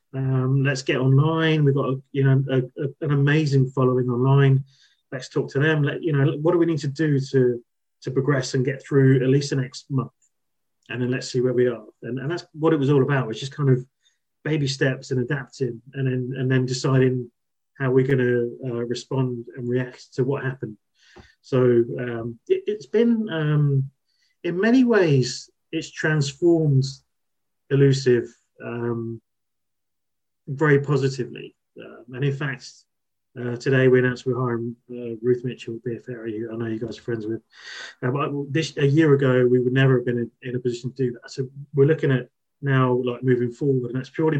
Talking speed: 190 wpm